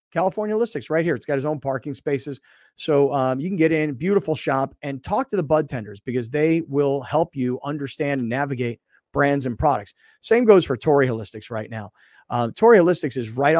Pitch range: 130-155 Hz